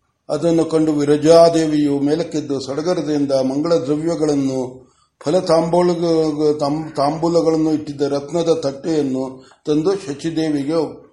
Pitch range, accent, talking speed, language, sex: 135-160 Hz, native, 80 wpm, Kannada, male